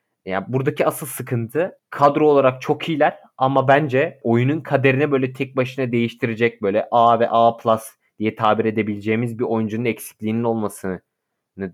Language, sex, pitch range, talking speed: Turkish, male, 105-130 Hz, 145 wpm